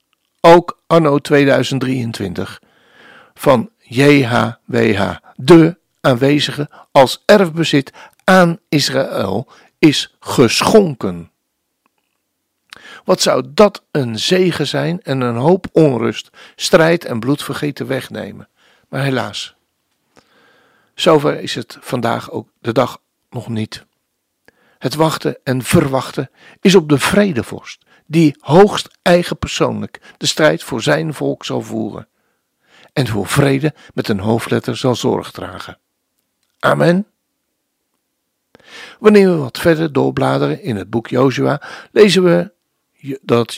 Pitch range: 120-175 Hz